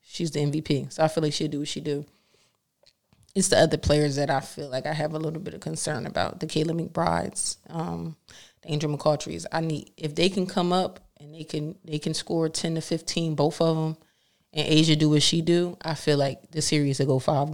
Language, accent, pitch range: English, American, 150-165 Hz